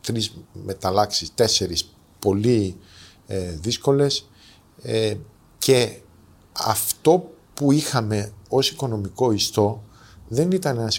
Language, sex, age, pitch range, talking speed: Greek, male, 50-69, 100-130 Hz, 95 wpm